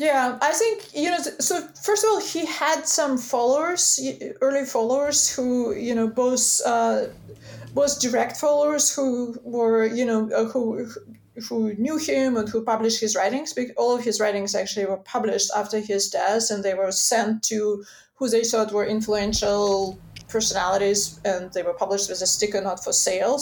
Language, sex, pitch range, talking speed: English, female, 210-270 Hz, 175 wpm